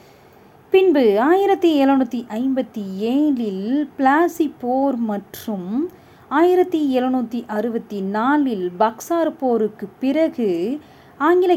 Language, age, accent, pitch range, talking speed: Tamil, 30-49, native, 195-270 Hz, 75 wpm